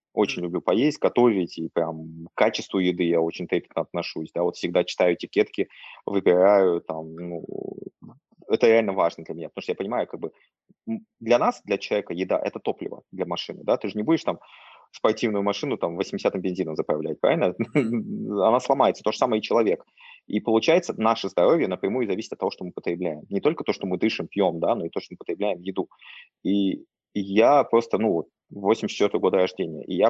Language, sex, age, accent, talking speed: Russian, male, 20-39, native, 195 wpm